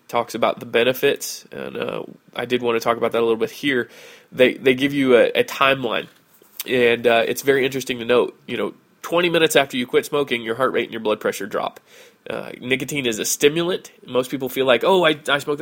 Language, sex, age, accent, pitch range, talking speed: English, male, 20-39, American, 120-145 Hz, 230 wpm